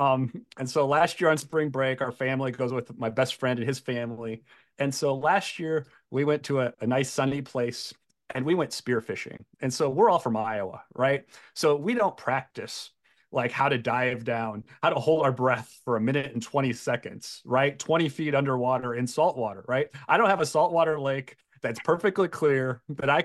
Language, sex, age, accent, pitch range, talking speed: English, male, 30-49, American, 130-170 Hz, 205 wpm